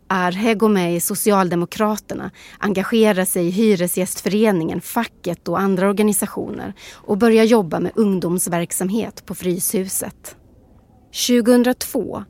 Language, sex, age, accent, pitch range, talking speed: English, female, 30-49, Swedish, 180-220 Hz, 100 wpm